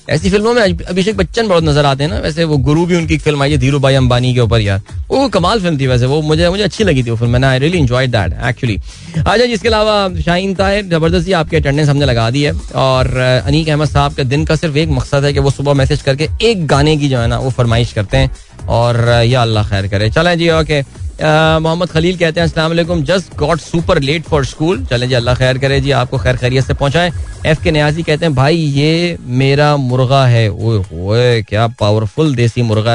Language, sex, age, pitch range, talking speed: Hindi, male, 20-39, 125-170 Hz, 220 wpm